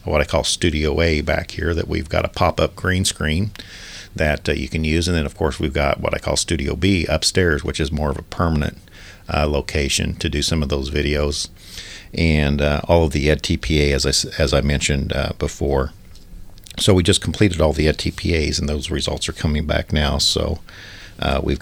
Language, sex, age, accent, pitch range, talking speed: English, male, 50-69, American, 80-95 Hz, 210 wpm